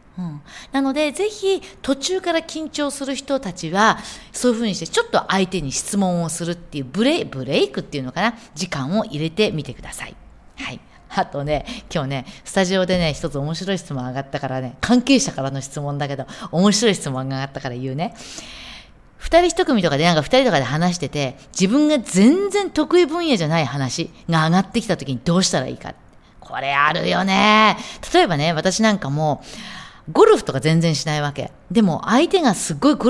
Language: Japanese